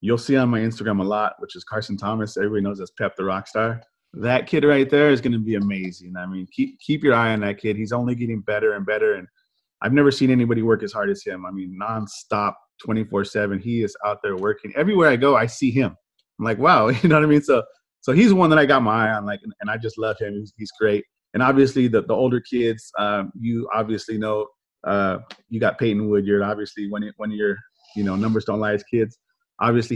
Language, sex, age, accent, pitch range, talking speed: English, male, 30-49, American, 105-130 Hz, 245 wpm